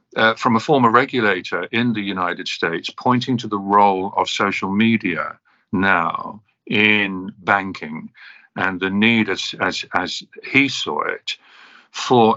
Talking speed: 140 wpm